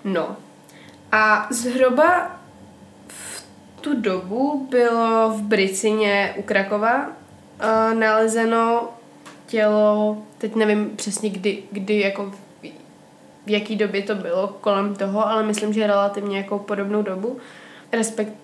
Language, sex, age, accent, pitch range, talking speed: Czech, female, 20-39, native, 210-235 Hz, 115 wpm